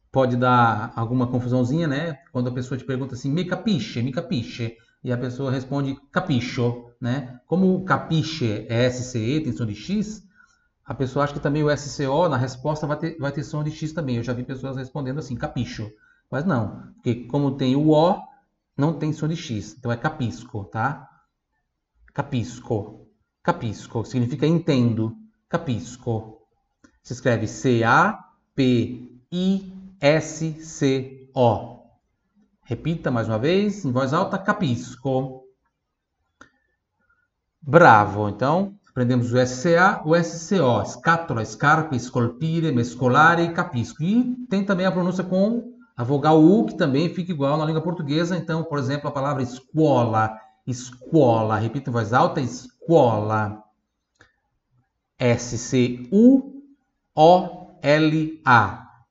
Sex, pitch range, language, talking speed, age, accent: male, 120-160 Hz, Italian, 130 wpm, 30-49, Brazilian